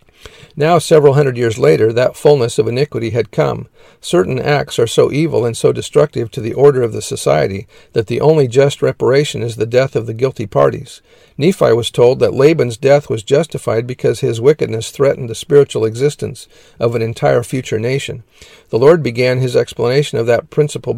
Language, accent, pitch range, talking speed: English, American, 115-145 Hz, 185 wpm